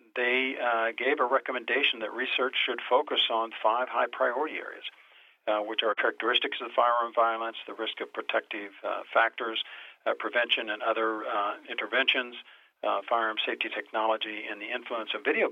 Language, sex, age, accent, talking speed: English, male, 50-69, American, 160 wpm